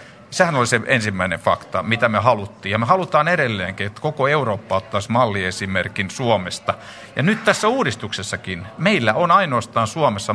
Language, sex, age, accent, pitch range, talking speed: Finnish, male, 50-69, native, 110-170 Hz, 150 wpm